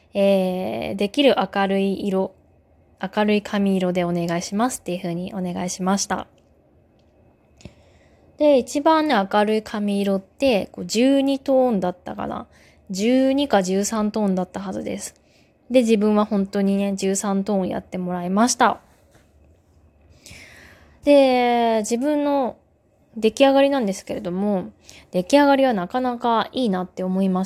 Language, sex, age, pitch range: Japanese, female, 20-39, 185-240 Hz